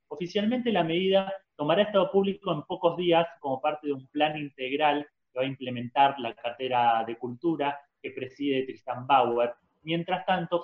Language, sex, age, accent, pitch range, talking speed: Spanish, male, 30-49, Argentinian, 130-160 Hz, 165 wpm